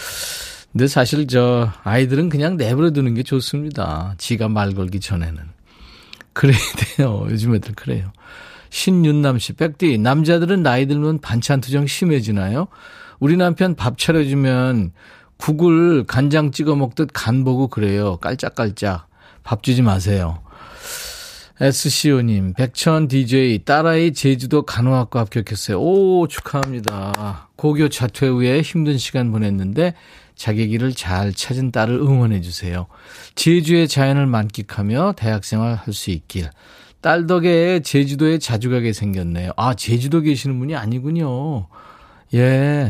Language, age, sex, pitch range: Korean, 40-59, male, 105-150 Hz